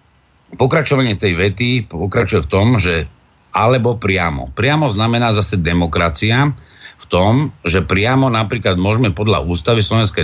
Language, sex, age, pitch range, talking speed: Slovak, male, 50-69, 95-120 Hz, 130 wpm